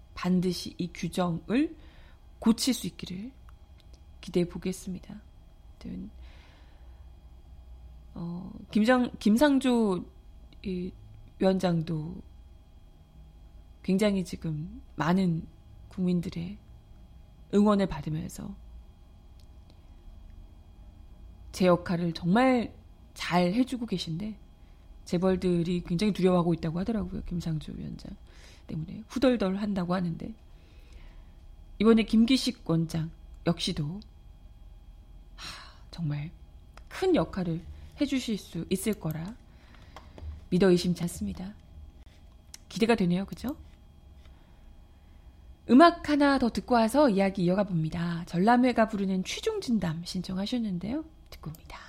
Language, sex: Korean, female